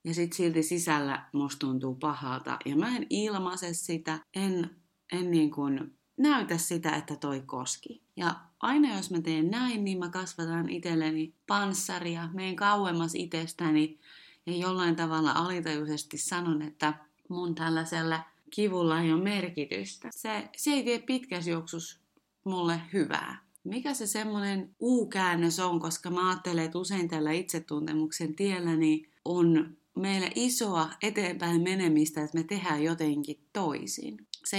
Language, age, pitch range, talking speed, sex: Finnish, 30-49, 155-195 Hz, 135 wpm, female